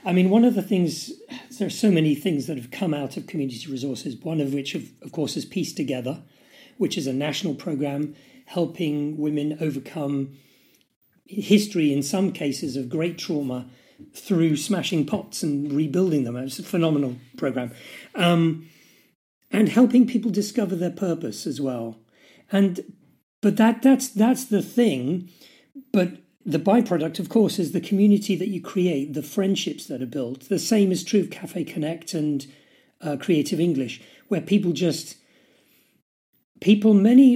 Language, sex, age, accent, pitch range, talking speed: English, male, 40-59, British, 150-205 Hz, 160 wpm